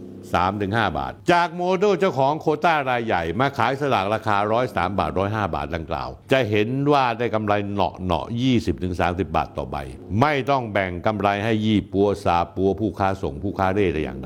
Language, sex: Thai, male